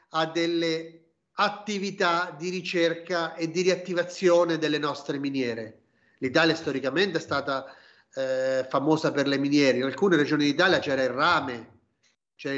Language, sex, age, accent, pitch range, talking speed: Italian, male, 40-59, native, 145-195 Hz, 130 wpm